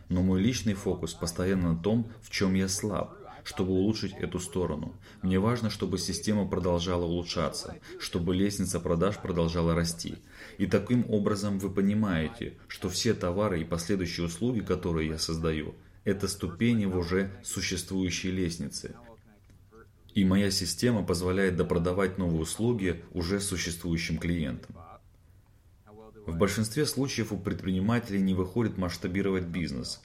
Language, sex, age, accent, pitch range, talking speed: Russian, male, 30-49, native, 90-105 Hz, 130 wpm